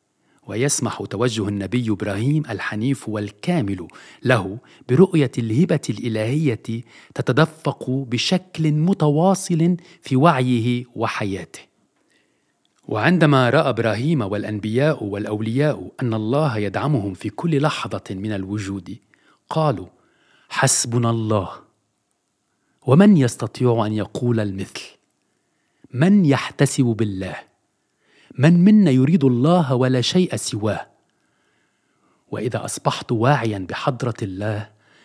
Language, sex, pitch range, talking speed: French, male, 110-150 Hz, 90 wpm